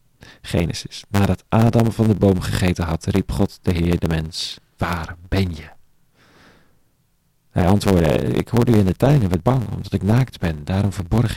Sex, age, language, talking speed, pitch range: male, 40-59, Dutch, 180 wpm, 95-120 Hz